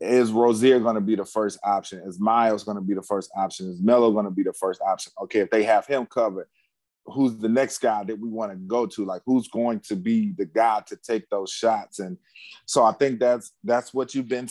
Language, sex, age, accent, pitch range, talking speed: English, male, 30-49, American, 115-140 Hz, 250 wpm